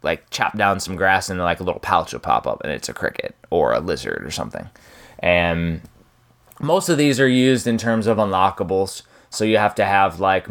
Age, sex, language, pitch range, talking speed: 20-39, male, English, 95-115 Hz, 225 wpm